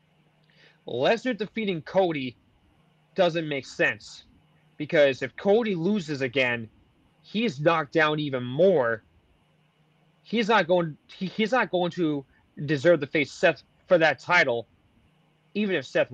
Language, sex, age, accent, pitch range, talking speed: English, male, 30-49, American, 145-180 Hz, 125 wpm